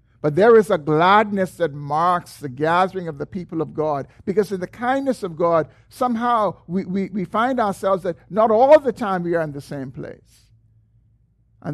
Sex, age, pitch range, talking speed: male, 50-69, 115-180 Hz, 195 wpm